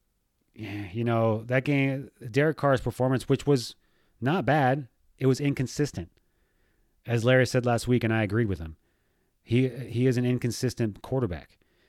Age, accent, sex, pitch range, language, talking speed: 30-49, American, male, 105-135 Hz, English, 150 wpm